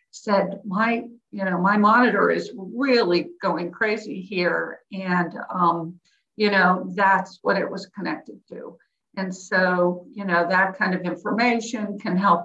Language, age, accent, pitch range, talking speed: English, 50-69, American, 185-240 Hz, 150 wpm